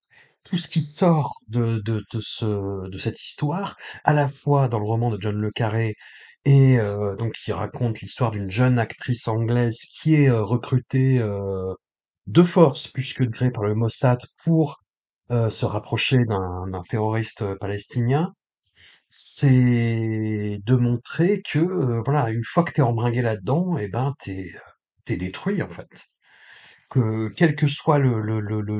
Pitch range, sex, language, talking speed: 110-145 Hz, male, French, 165 wpm